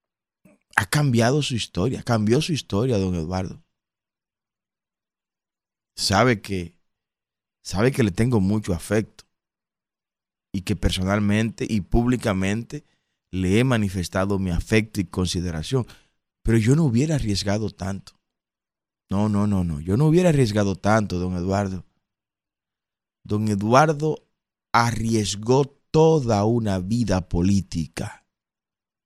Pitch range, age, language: 95-130 Hz, 30-49, Spanish